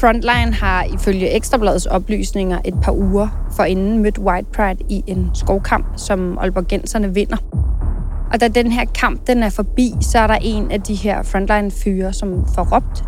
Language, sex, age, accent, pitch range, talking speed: Danish, female, 30-49, native, 180-220 Hz, 175 wpm